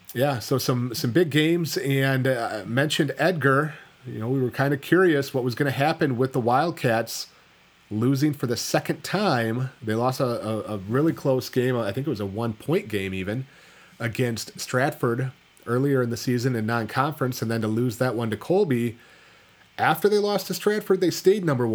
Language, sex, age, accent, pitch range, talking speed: English, male, 30-49, American, 110-140 Hz, 195 wpm